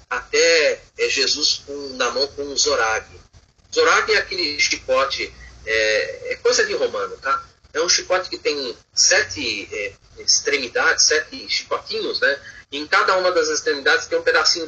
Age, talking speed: 40-59, 160 wpm